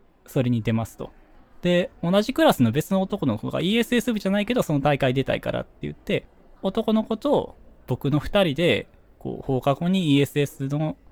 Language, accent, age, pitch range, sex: Japanese, native, 20-39, 125-200 Hz, male